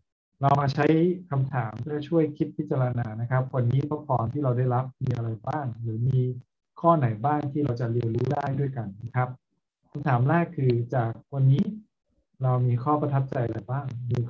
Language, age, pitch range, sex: Thai, 20-39, 120-140 Hz, male